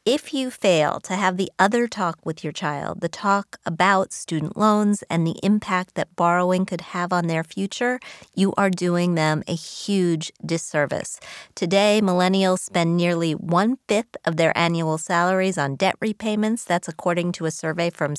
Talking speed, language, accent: 170 wpm, English, American